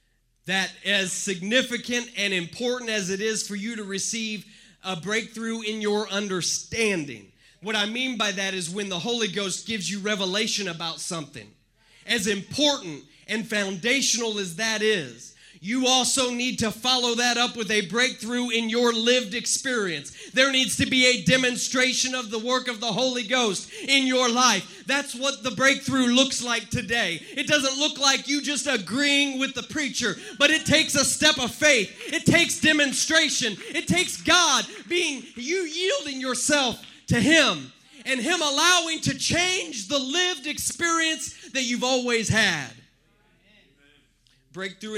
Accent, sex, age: American, male, 30-49